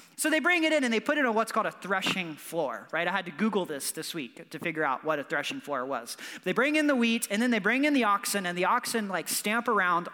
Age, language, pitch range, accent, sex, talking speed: 30-49, English, 185-250 Hz, American, male, 290 wpm